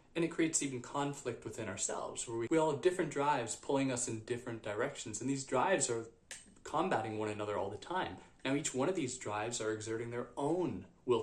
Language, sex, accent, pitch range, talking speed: English, male, American, 110-140 Hz, 215 wpm